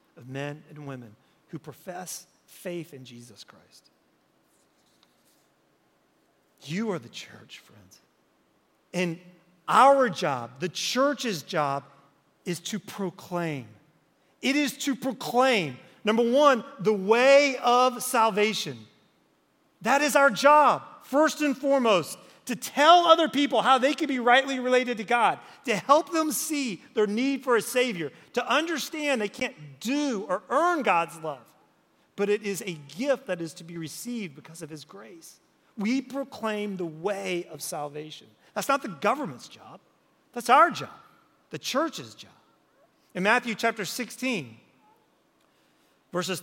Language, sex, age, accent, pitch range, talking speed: English, male, 40-59, American, 170-265 Hz, 140 wpm